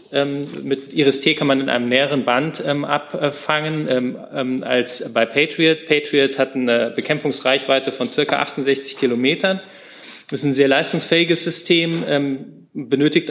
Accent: German